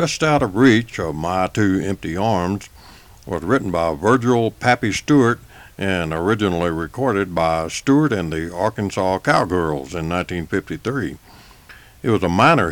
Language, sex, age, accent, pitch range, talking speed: English, male, 60-79, American, 90-125 Hz, 140 wpm